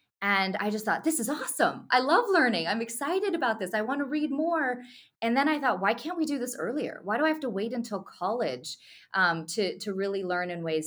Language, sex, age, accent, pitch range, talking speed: English, female, 20-39, American, 155-195 Hz, 245 wpm